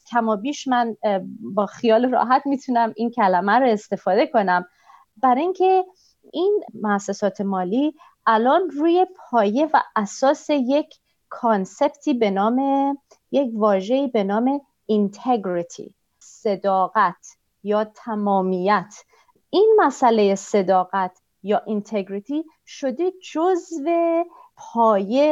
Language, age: Persian, 40-59